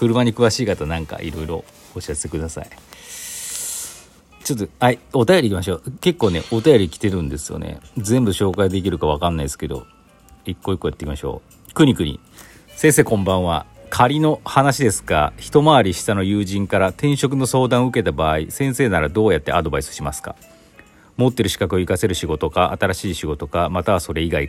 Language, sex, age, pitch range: Japanese, male, 40-59, 85-120 Hz